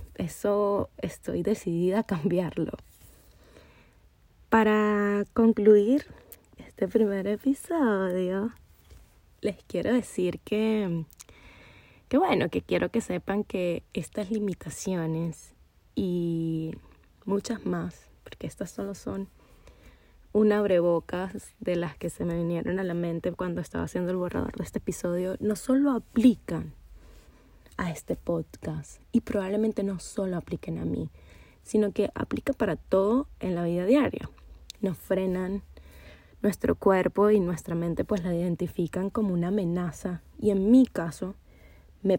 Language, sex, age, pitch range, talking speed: Spanish, female, 20-39, 170-215 Hz, 125 wpm